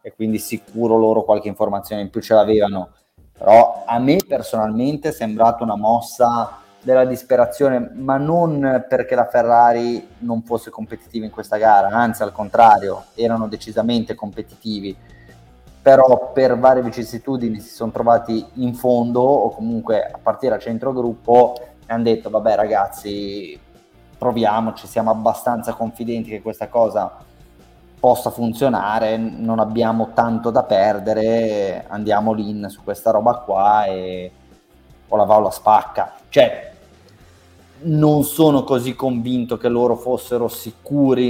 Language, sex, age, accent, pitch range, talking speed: Italian, male, 20-39, native, 110-120 Hz, 135 wpm